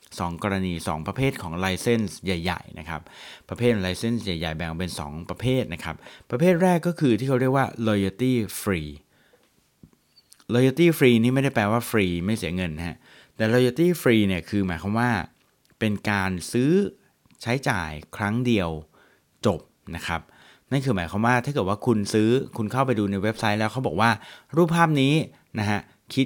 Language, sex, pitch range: Thai, male, 95-130 Hz